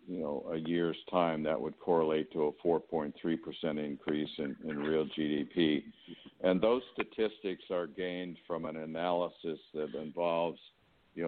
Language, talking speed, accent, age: English, 145 wpm, American, 60-79